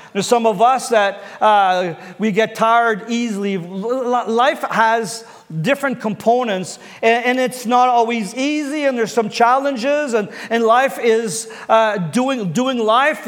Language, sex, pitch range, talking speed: English, male, 215-250 Hz, 150 wpm